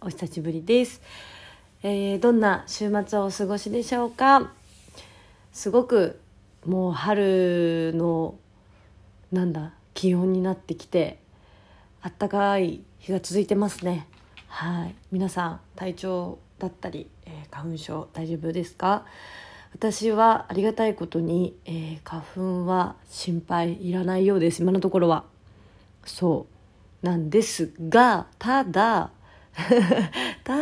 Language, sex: Japanese, female